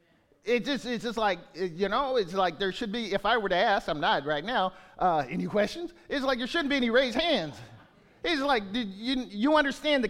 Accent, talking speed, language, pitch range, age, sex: American, 230 wpm, English, 195-260 Hz, 40-59, male